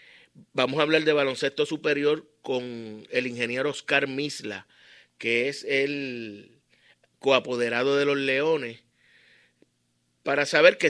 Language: Spanish